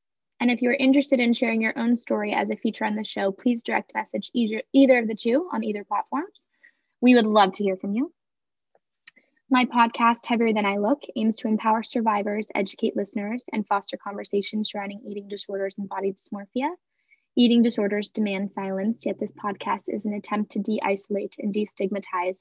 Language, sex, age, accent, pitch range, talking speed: English, female, 10-29, American, 195-230 Hz, 180 wpm